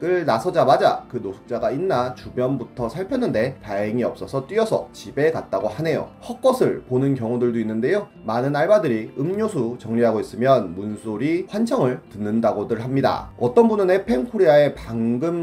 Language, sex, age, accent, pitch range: Korean, male, 30-49, native, 115-160 Hz